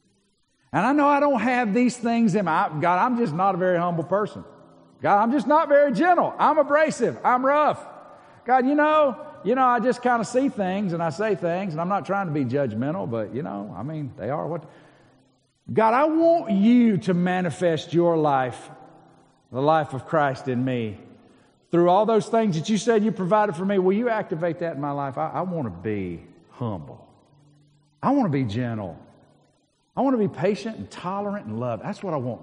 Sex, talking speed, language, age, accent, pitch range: male, 215 wpm, English, 50-69, American, 125-200 Hz